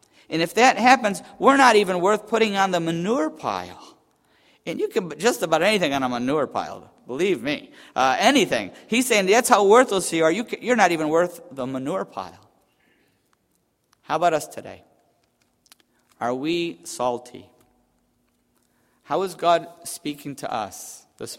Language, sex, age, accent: English, male, 50-69, American